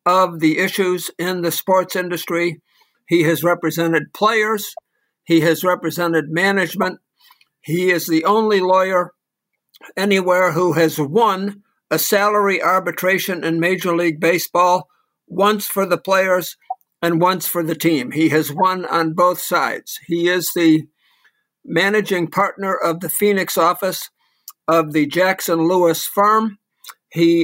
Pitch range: 165-195 Hz